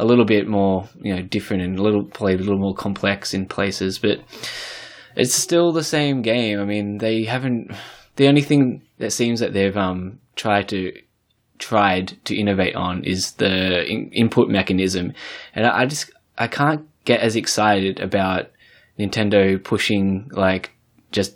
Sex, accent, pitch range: male, Australian, 95-105 Hz